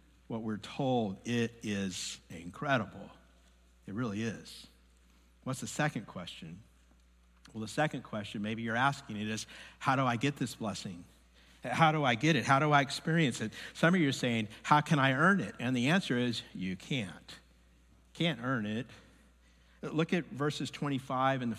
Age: 50-69